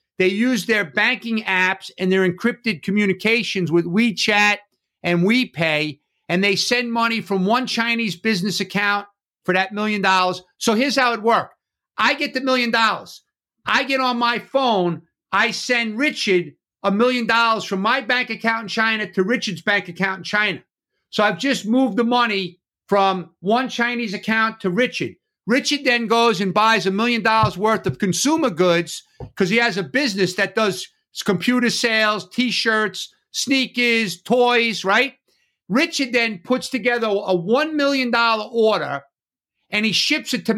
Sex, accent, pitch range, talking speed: male, American, 195-245 Hz, 165 wpm